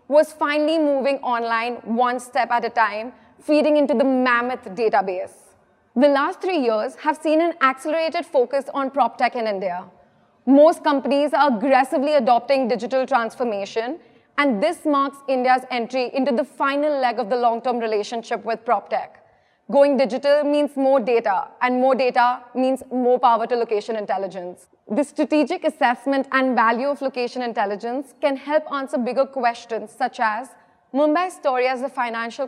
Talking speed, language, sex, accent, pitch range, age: 155 wpm, English, female, Indian, 230-280 Hz, 30-49